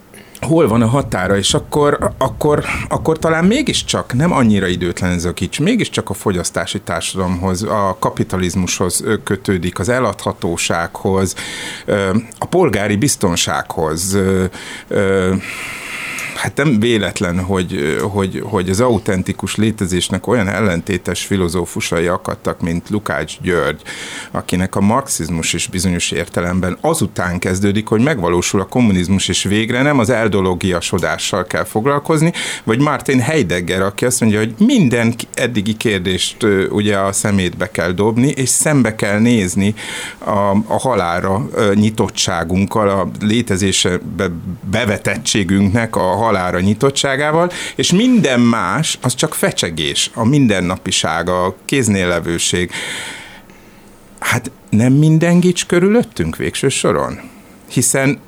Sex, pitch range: male, 95-120 Hz